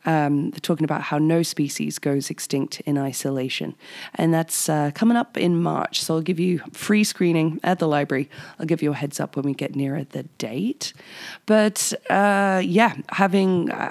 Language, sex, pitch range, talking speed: English, female, 145-175 Hz, 180 wpm